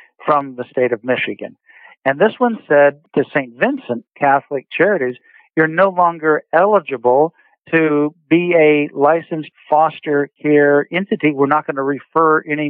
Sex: male